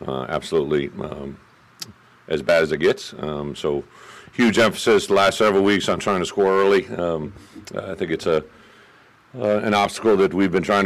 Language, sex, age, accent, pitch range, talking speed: English, male, 50-69, American, 80-95 Hz, 180 wpm